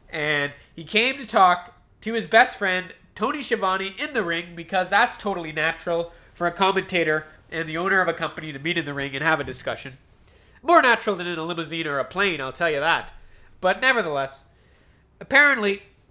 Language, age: English, 20-39